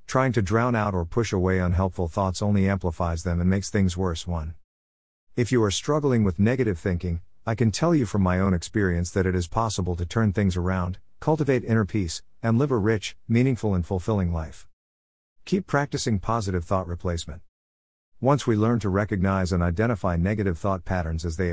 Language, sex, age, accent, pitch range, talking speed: English, male, 50-69, American, 85-120 Hz, 190 wpm